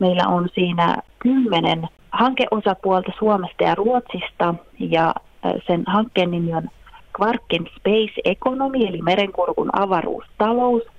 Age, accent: 30-49, native